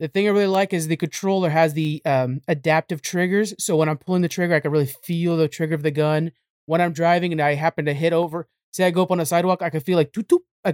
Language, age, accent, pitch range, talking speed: English, 20-39, American, 160-200 Hz, 275 wpm